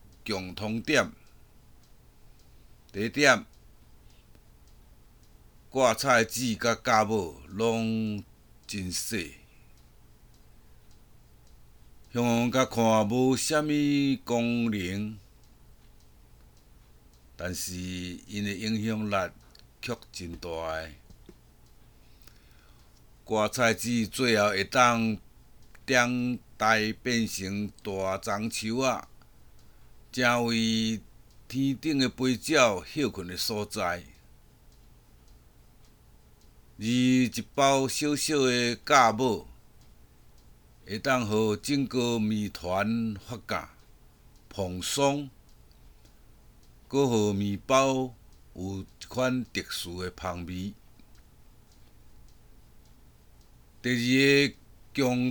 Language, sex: Chinese, male